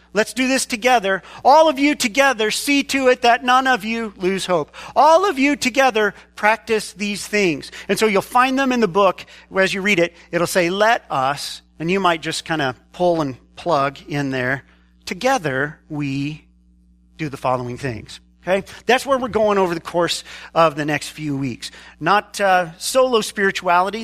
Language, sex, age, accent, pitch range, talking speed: English, male, 40-59, American, 165-235 Hz, 185 wpm